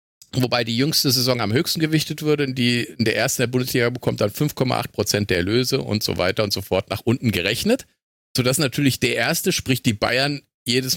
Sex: male